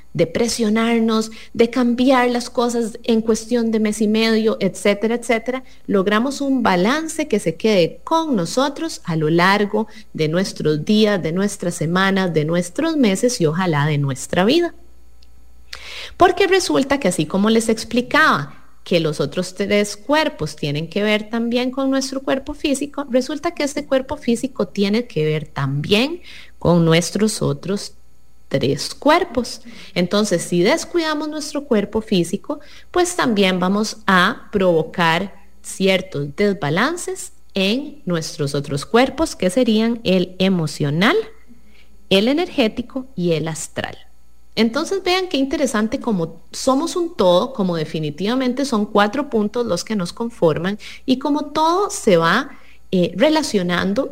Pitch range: 175-265 Hz